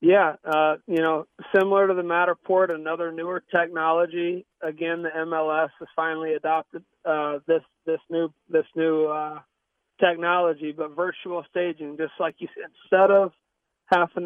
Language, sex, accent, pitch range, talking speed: English, male, American, 160-180 Hz, 145 wpm